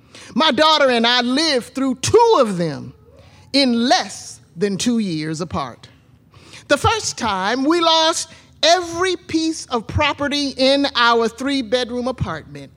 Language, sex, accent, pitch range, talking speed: English, male, American, 160-270 Hz, 130 wpm